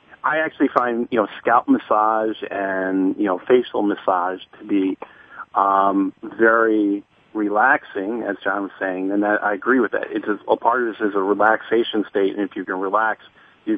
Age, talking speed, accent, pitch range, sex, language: 40-59, 185 wpm, American, 100-115 Hz, male, English